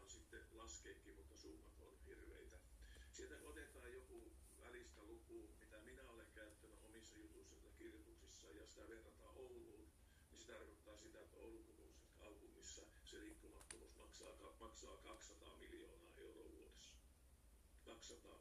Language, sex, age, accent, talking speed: Finnish, male, 50-69, native, 115 wpm